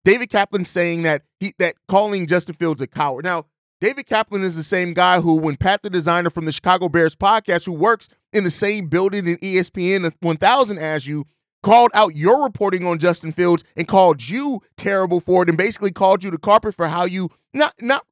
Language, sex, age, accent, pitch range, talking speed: English, male, 30-49, American, 160-200 Hz, 210 wpm